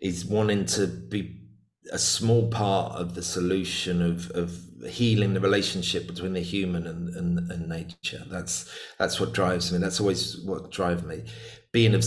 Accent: British